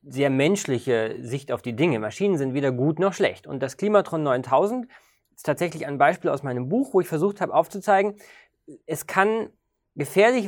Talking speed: 180 wpm